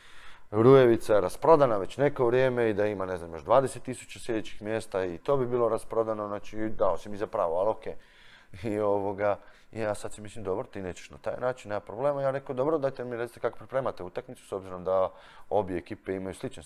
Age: 20-39